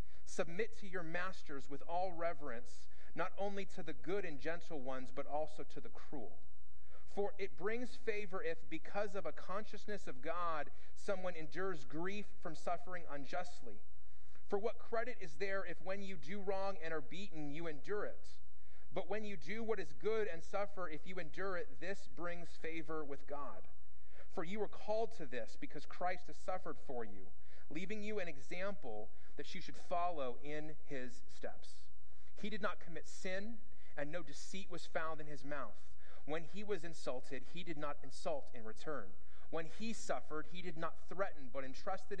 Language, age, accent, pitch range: English, 30-49, American, 135-190 Hz